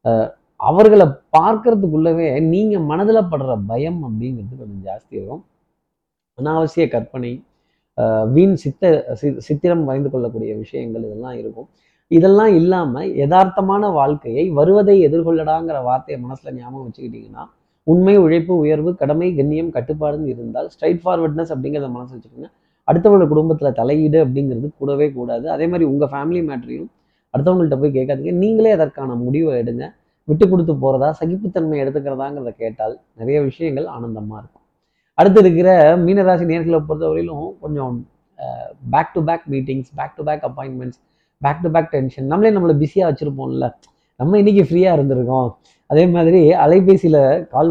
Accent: native